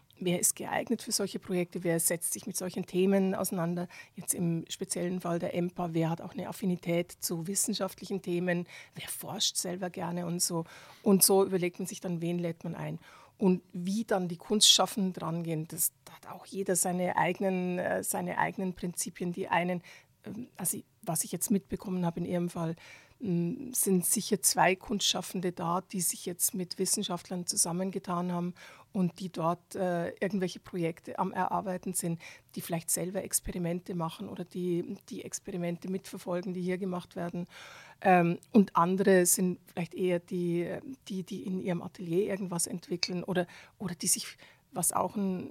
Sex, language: female, German